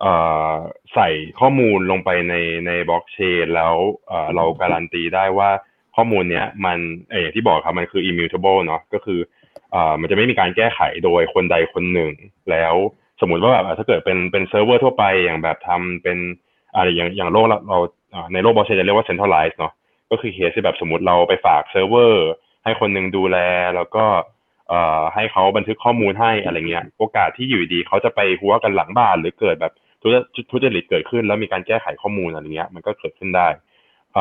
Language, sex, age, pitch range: Thai, male, 20-39, 85-110 Hz